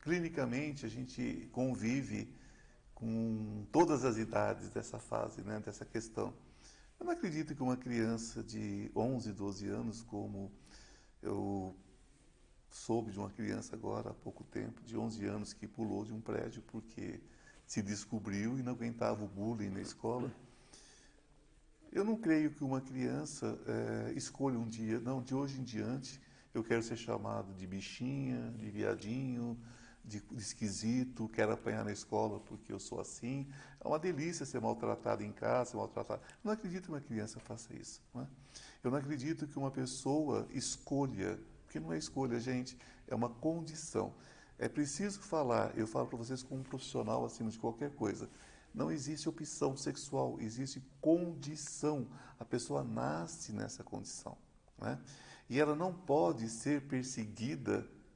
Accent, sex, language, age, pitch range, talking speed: Brazilian, male, Portuguese, 50-69, 110-135 Hz, 155 wpm